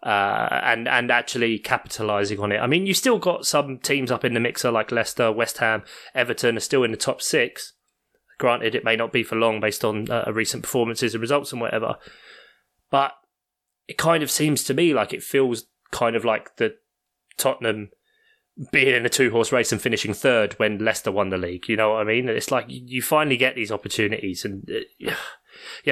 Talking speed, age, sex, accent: 205 wpm, 20-39, male, British